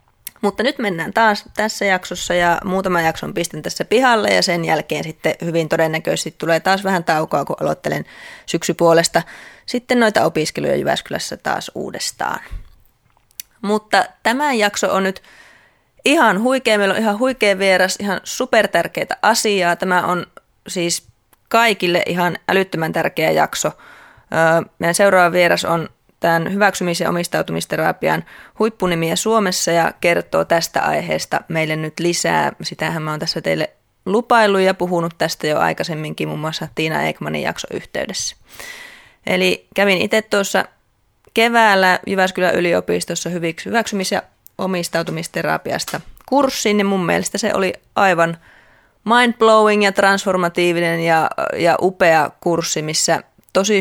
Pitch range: 165-205 Hz